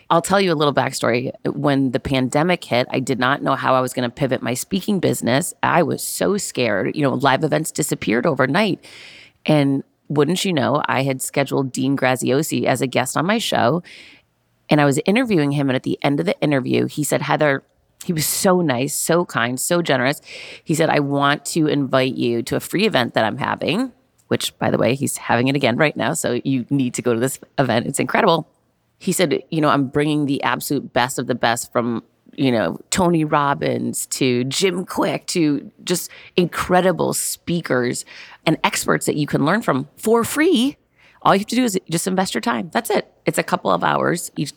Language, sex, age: English, female, 30-49